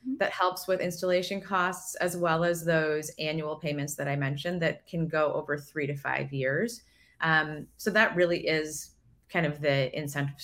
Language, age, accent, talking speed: English, 20-39, American, 180 wpm